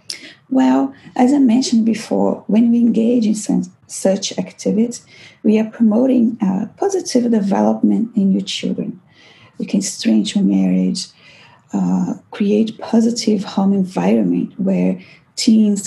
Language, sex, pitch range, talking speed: English, female, 185-245 Hz, 120 wpm